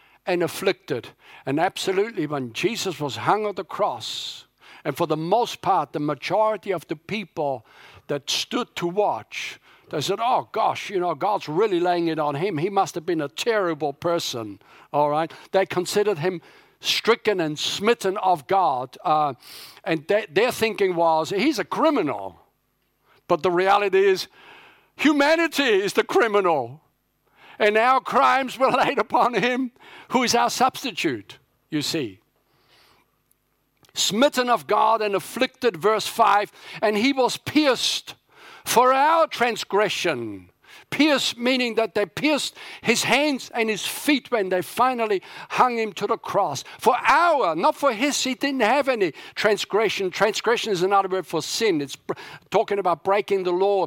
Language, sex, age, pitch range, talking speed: English, male, 60-79, 170-250 Hz, 155 wpm